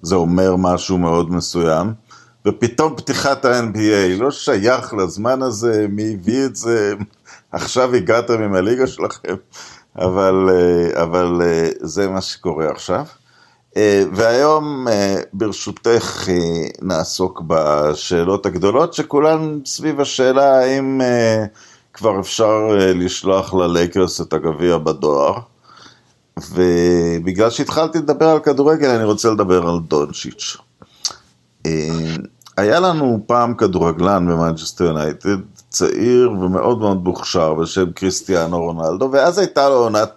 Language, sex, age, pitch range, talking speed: Hebrew, male, 50-69, 90-130 Hz, 105 wpm